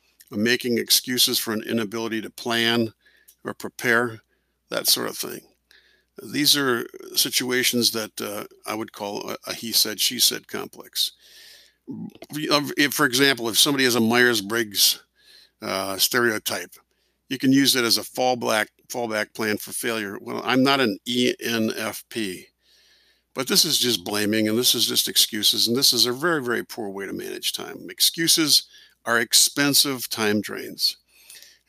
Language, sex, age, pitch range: English, male, 50-69, 115-140 Hz